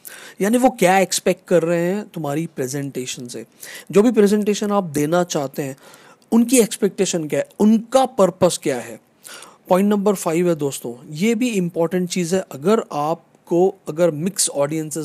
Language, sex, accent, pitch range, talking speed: Hindi, male, native, 155-210 Hz, 165 wpm